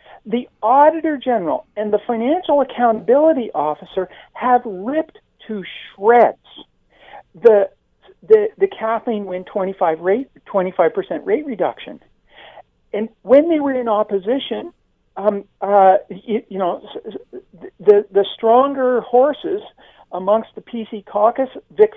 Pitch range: 195-275 Hz